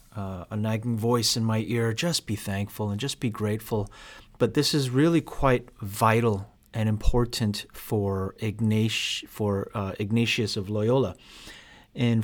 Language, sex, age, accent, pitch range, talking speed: English, male, 30-49, American, 105-125 Hz, 145 wpm